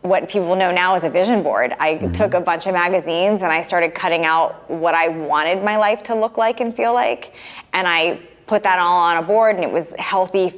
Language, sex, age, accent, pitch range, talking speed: English, female, 20-39, American, 170-205 Hz, 240 wpm